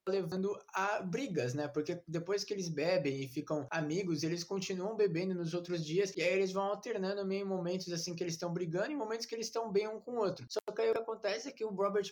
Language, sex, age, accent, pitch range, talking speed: Portuguese, male, 20-39, Brazilian, 170-205 Hz, 250 wpm